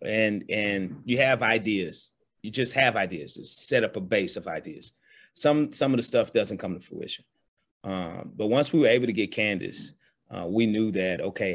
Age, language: 30-49, English